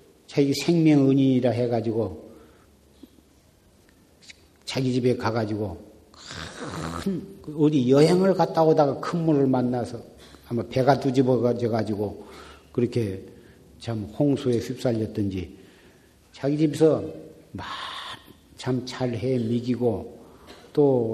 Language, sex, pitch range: Korean, male, 110-150 Hz